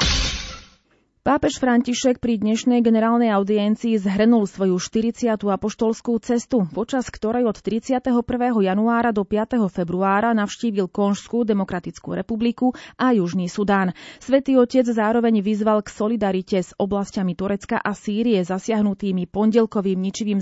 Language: Slovak